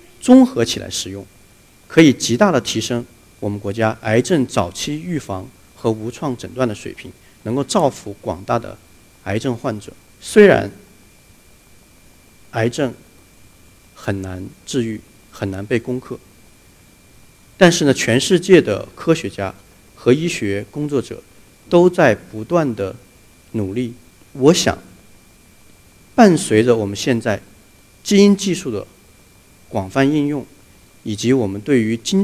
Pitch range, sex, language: 100-135 Hz, male, Chinese